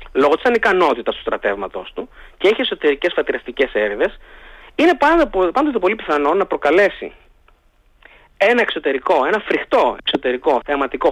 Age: 30-49